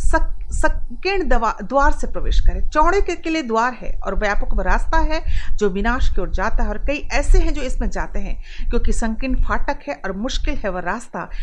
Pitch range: 215-295 Hz